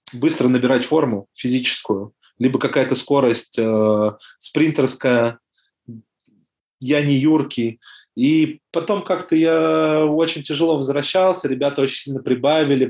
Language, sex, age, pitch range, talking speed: Russian, male, 20-39, 110-135 Hz, 105 wpm